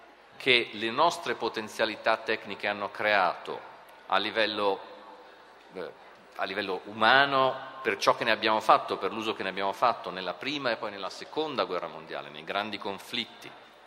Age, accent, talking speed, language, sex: 40-59, native, 145 wpm, Italian, male